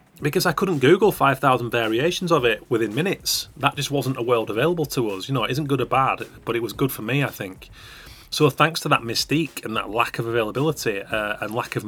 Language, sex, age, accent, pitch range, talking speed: English, male, 30-49, British, 115-145 Hz, 235 wpm